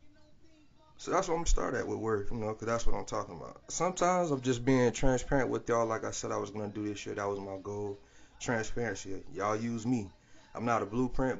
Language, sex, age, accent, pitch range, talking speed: English, male, 30-49, American, 105-135 Hz, 245 wpm